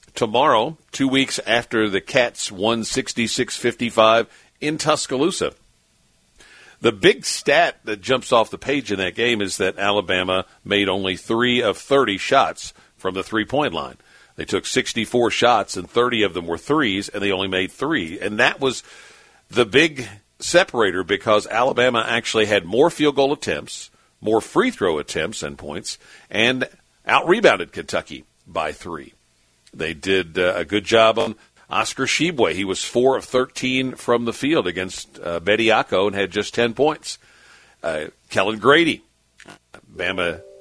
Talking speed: 150 wpm